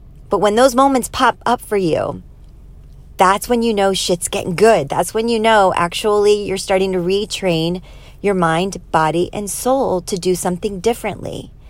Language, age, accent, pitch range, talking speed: English, 40-59, American, 180-220 Hz, 170 wpm